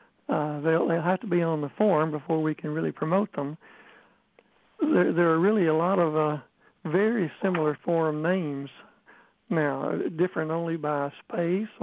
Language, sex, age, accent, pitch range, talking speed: English, male, 60-79, American, 150-180 Hz, 165 wpm